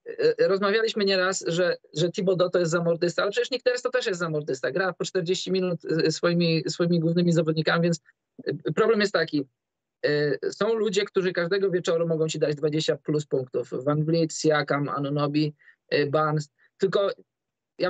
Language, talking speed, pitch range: Polish, 160 wpm, 165-195 Hz